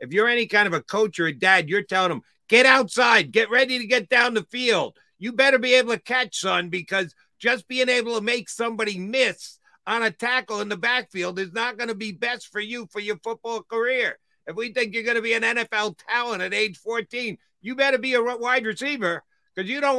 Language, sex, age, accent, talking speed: English, male, 50-69, American, 230 wpm